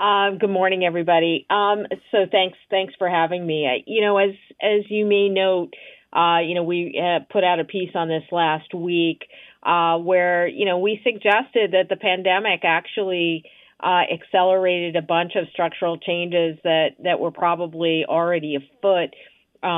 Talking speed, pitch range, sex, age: 170 wpm, 160-180 Hz, female, 50-69